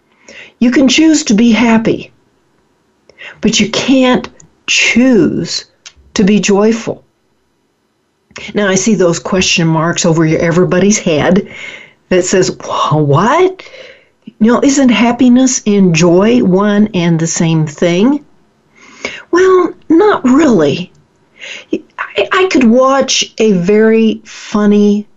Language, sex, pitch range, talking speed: English, female, 185-250 Hz, 110 wpm